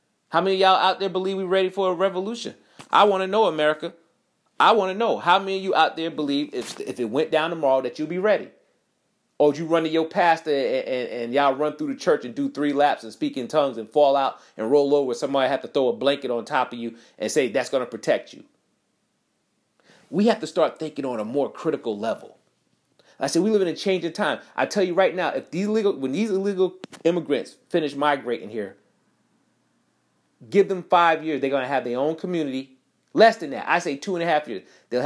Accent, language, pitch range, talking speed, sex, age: American, English, 140-185 Hz, 240 wpm, male, 30-49